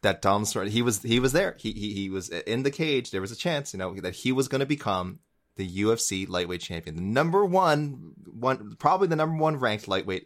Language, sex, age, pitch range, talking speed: English, male, 20-39, 95-125 Hz, 240 wpm